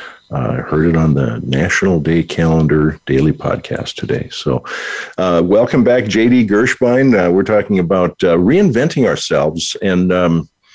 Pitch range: 80-105 Hz